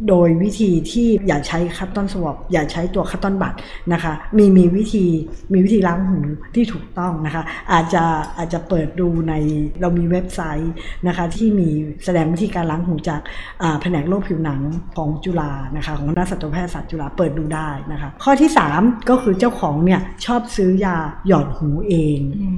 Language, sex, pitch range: Thai, female, 160-200 Hz